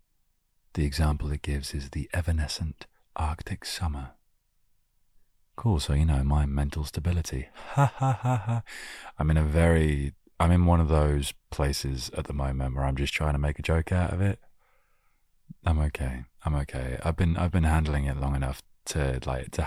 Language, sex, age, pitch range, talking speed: English, male, 30-49, 70-85 Hz, 180 wpm